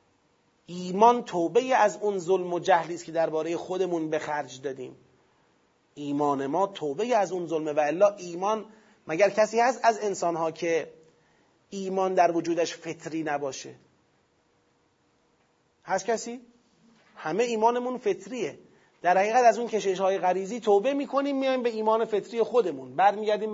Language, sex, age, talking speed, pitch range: Persian, male, 30-49, 135 wpm, 170-230 Hz